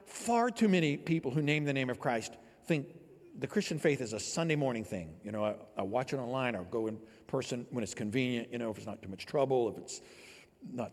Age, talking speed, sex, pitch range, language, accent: 60-79, 240 wpm, male, 115-155 Hz, English, American